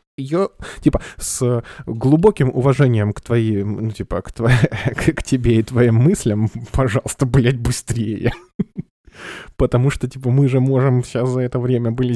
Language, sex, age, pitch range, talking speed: Russian, male, 20-39, 95-125 Hz, 150 wpm